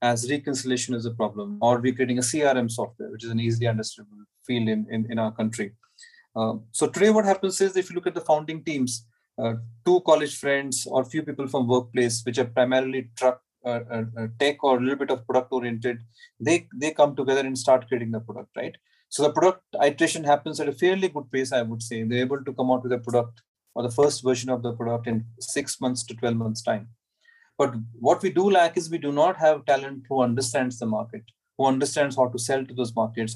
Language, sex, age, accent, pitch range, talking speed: English, male, 30-49, Indian, 120-150 Hz, 230 wpm